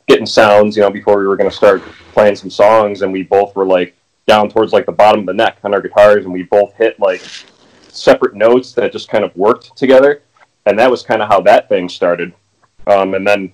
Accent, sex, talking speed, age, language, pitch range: American, male, 240 wpm, 30-49, English, 90-105 Hz